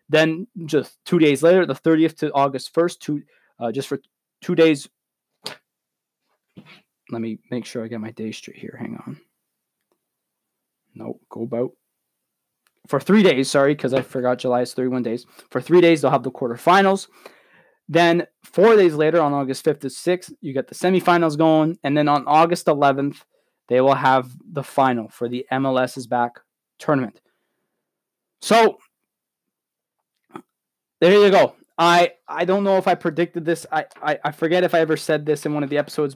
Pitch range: 130-165 Hz